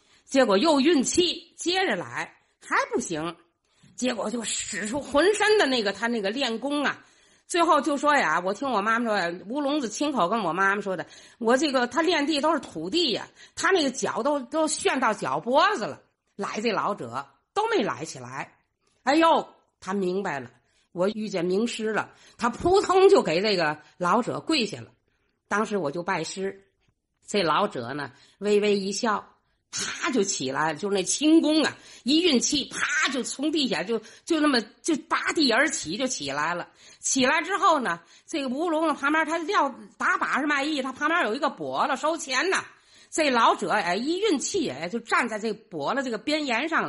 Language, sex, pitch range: Chinese, female, 205-315 Hz